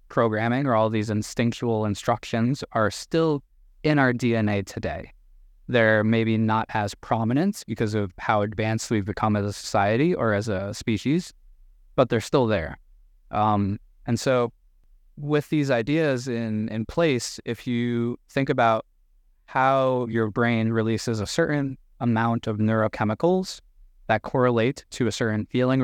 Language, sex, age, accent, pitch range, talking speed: English, male, 20-39, American, 105-125 Hz, 145 wpm